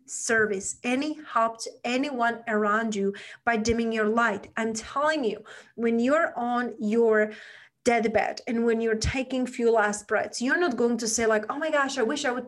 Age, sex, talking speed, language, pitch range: 30-49, female, 190 wpm, English, 205-240 Hz